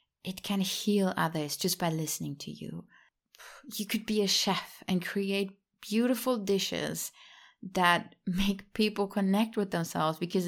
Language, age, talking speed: English, 30-49, 145 wpm